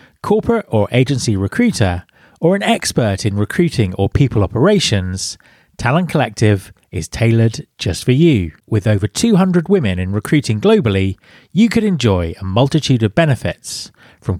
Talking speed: 140 wpm